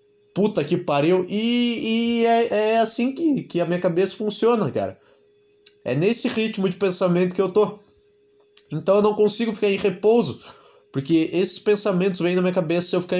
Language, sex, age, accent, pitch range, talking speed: Portuguese, male, 20-39, Brazilian, 155-215 Hz, 180 wpm